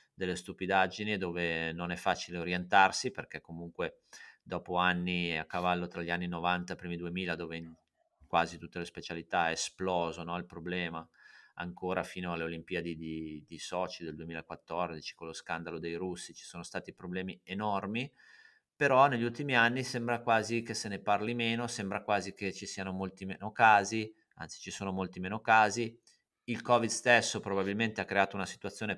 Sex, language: male, Italian